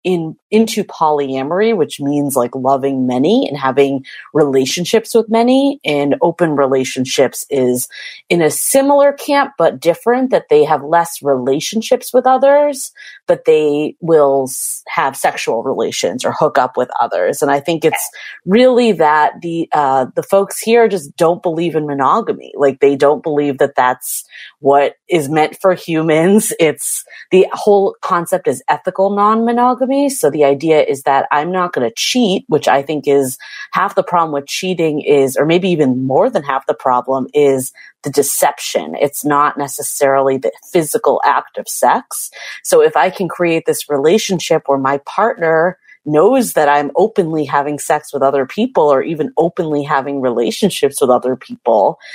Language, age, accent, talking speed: English, 30-49, American, 165 wpm